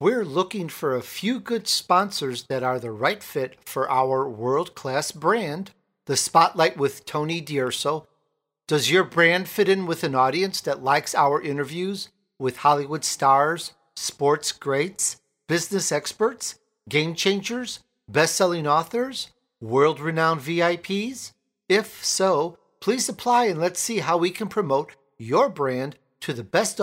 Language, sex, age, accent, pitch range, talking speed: English, male, 50-69, American, 140-195 Hz, 140 wpm